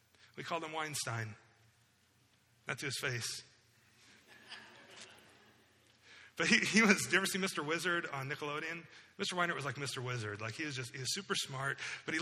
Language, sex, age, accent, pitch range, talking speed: English, male, 30-49, American, 120-175 Hz, 175 wpm